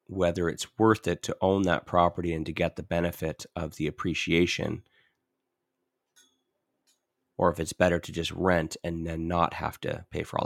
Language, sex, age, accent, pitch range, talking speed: English, male, 30-49, American, 85-95 Hz, 180 wpm